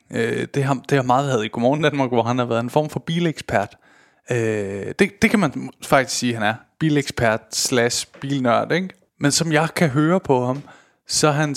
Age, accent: 20-39, native